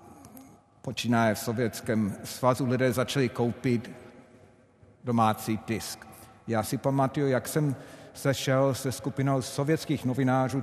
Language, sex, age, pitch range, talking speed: Czech, male, 50-69, 120-145 Hz, 105 wpm